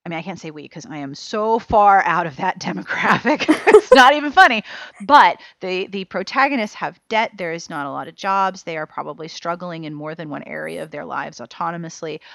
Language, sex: English, female